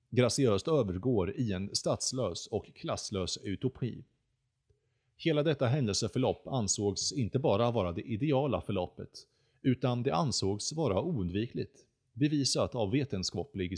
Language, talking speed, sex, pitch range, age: Swedish, 115 wpm, male, 100-130 Hz, 30-49